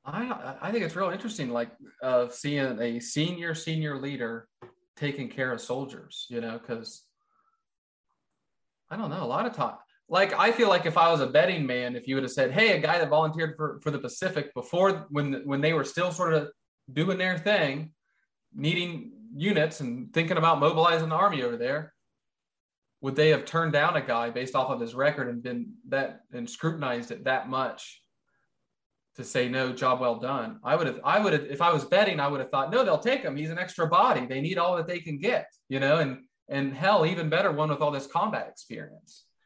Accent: American